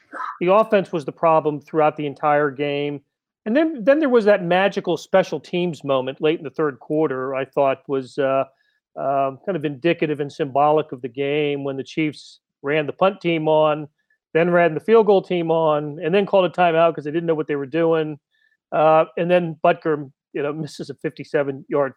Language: English